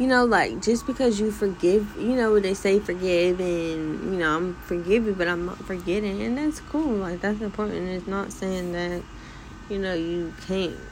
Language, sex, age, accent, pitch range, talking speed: English, female, 20-39, American, 155-190 Hz, 190 wpm